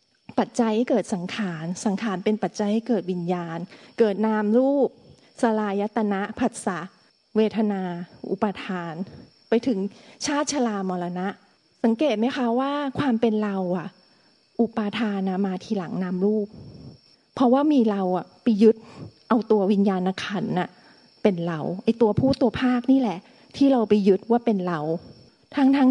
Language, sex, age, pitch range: Thai, female, 30-49, 200-260 Hz